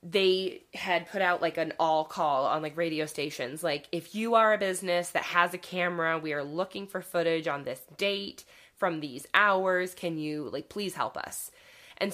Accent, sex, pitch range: American, female, 165-195 Hz